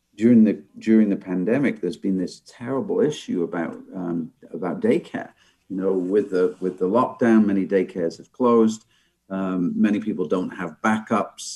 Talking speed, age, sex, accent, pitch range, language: 160 wpm, 50-69, male, British, 95-130 Hz, English